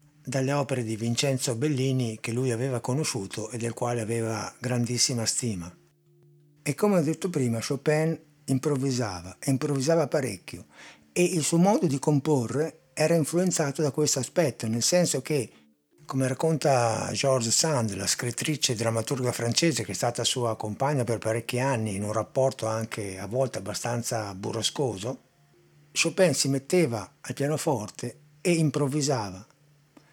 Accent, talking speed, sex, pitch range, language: native, 140 wpm, male, 120-155 Hz, Italian